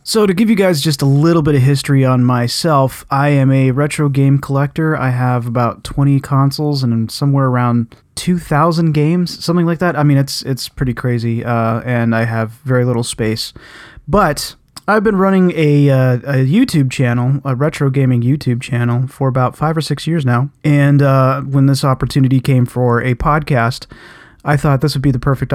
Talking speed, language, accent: 195 wpm, English, American